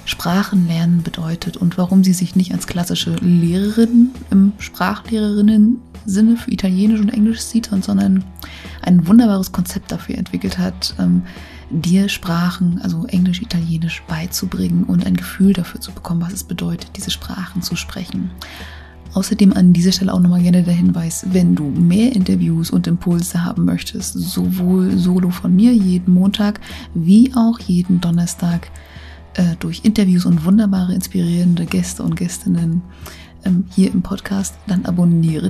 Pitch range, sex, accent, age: 175-205 Hz, female, German, 20-39